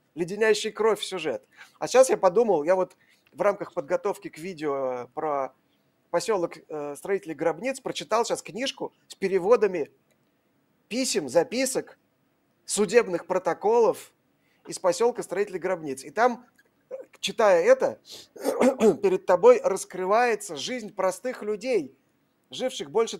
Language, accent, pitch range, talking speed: Russian, native, 170-250 Hz, 115 wpm